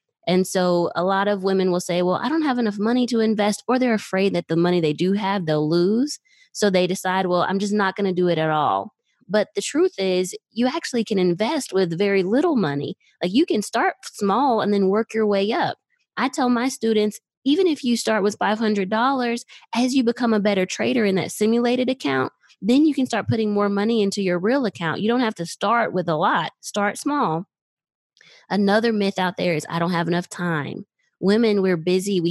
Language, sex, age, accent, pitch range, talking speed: English, female, 20-39, American, 175-225 Hz, 220 wpm